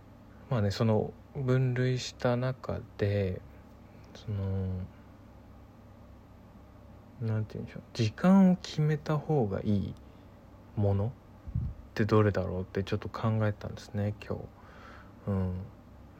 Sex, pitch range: male, 100-115 Hz